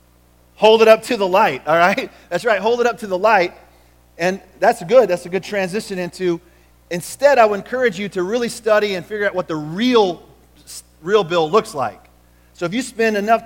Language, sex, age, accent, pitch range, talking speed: English, male, 30-49, American, 155-215 Hz, 210 wpm